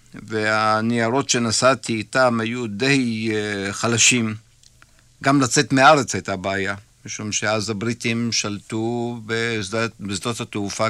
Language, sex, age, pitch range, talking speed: Hebrew, male, 50-69, 105-125 Hz, 100 wpm